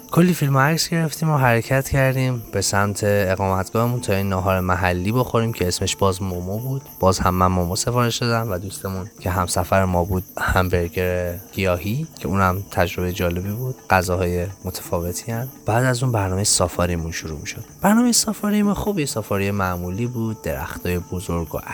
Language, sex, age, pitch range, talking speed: Persian, male, 20-39, 85-110 Hz, 165 wpm